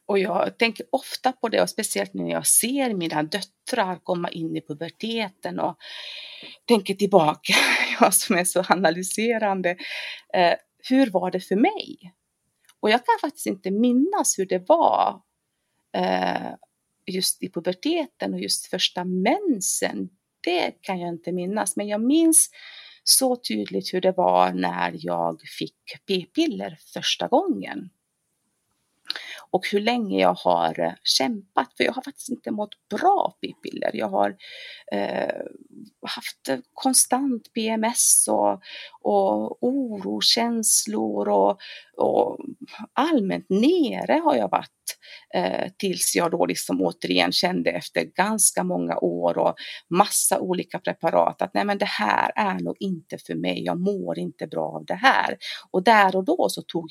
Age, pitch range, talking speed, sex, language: 30-49, 160-250 Hz, 140 wpm, female, Swedish